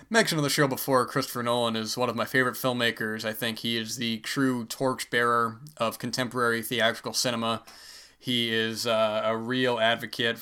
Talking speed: 175 wpm